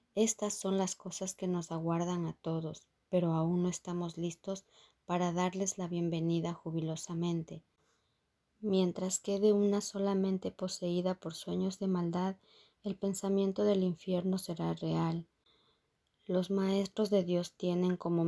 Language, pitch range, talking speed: Spanish, 170-195 Hz, 130 wpm